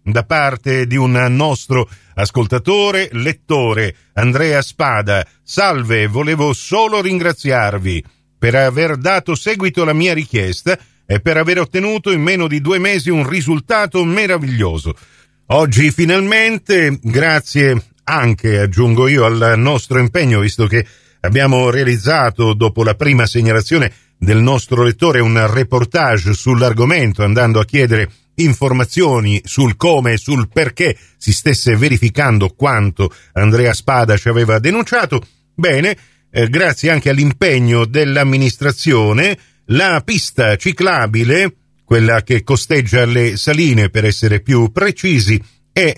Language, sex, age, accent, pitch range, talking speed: Italian, male, 50-69, native, 110-150 Hz, 120 wpm